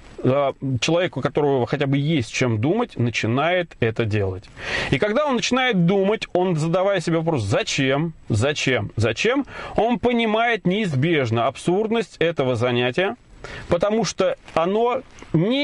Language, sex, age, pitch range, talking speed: Russian, male, 30-49, 135-190 Hz, 125 wpm